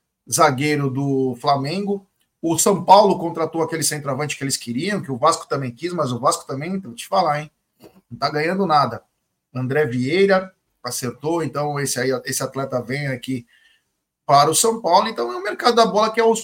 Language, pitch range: Portuguese, 145-210 Hz